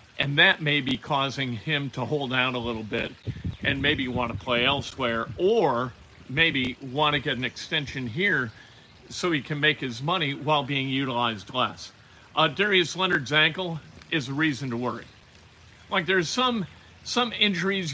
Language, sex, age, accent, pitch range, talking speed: English, male, 50-69, American, 125-170 Hz, 165 wpm